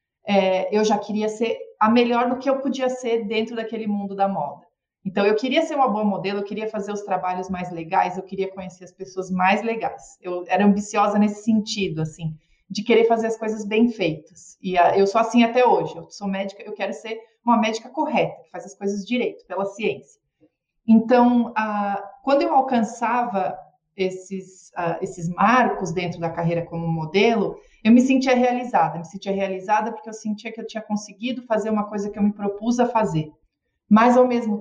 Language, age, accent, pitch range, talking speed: Portuguese, 30-49, Brazilian, 190-235 Hz, 200 wpm